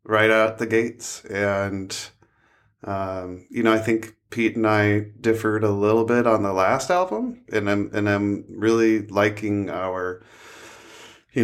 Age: 30-49